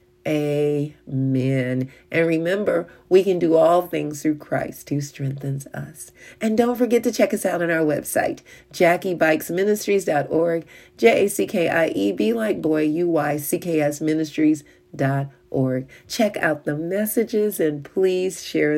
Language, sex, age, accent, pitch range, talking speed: English, female, 40-59, American, 150-195 Hz, 140 wpm